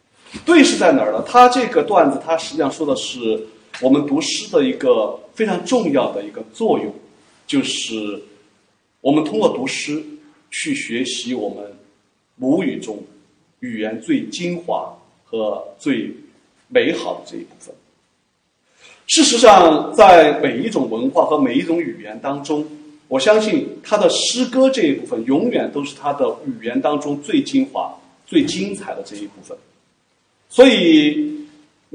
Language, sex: Chinese, male